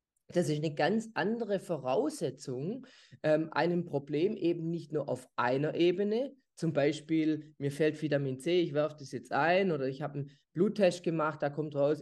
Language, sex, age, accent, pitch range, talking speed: English, male, 20-39, German, 145-185 Hz, 175 wpm